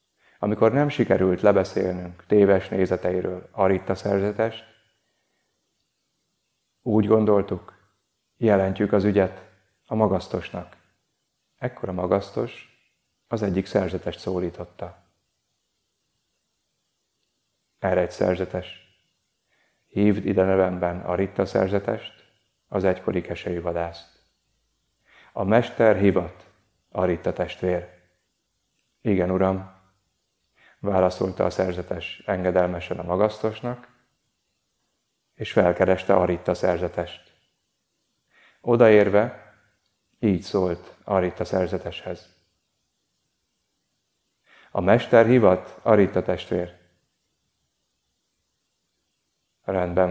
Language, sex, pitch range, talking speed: Hungarian, male, 90-105 Hz, 75 wpm